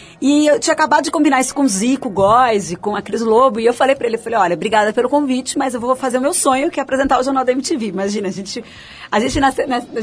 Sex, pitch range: female, 200-255 Hz